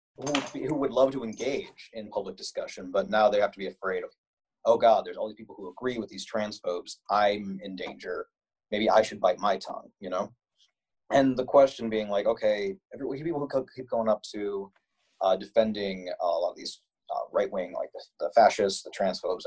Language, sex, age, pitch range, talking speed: English, male, 30-49, 105-145 Hz, 195 wpm